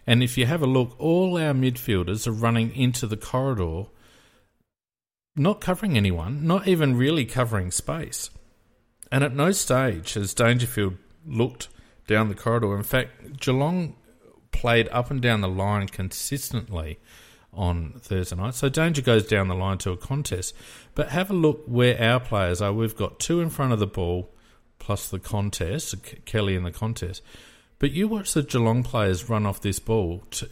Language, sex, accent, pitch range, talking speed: English, male, Australian, 100-130 Hz, 175 wpm